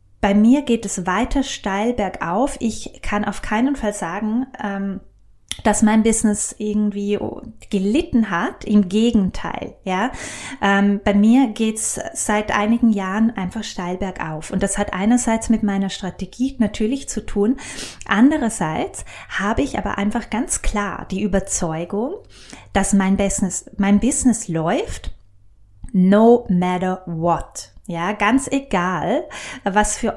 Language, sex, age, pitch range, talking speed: German, female, 20-39, 195-230 Hz, 130 wpm